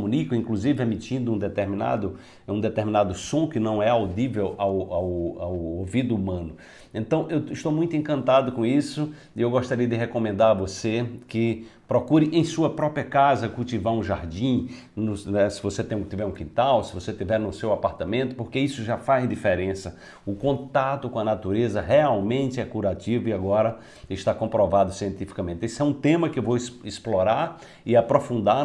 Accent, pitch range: Brazilian, 100-125 Hz